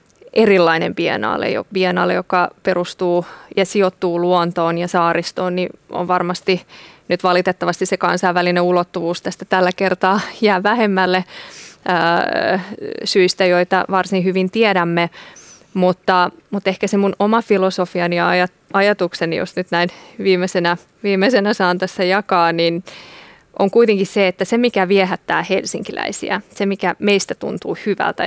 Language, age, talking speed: Finnish, 20-39, 125 wpm